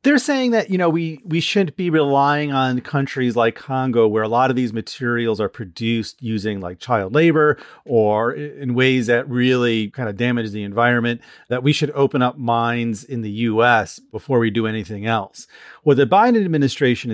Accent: American